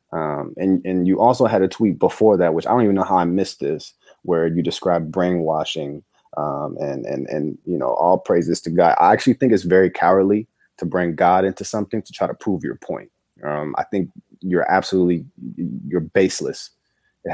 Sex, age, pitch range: male, 30-49, 90-105 Hz